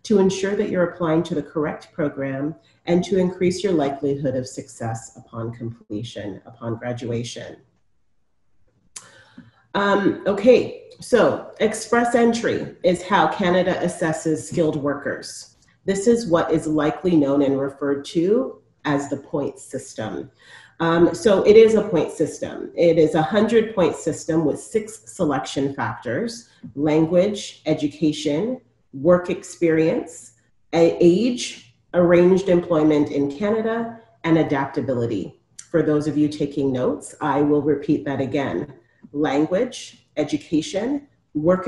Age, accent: 40-59, American